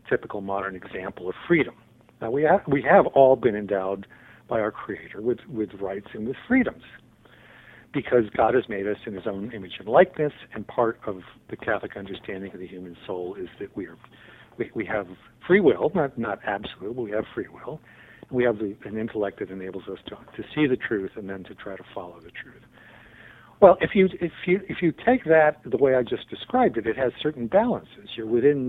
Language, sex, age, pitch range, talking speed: English, male, 60-79, 105-165 Hz, 215 wpm